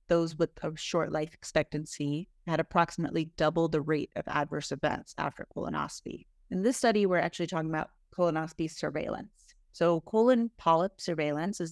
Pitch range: 155-180 Hz